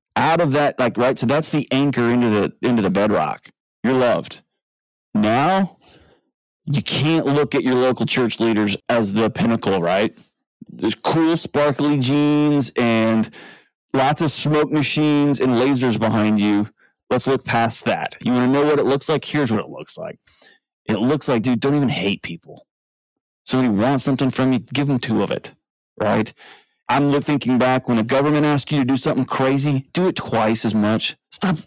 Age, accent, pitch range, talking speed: 30-49, American, 115-145 Hz, 180 wpm